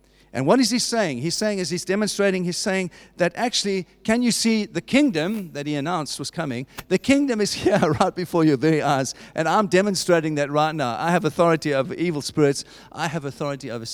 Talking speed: 210 wpm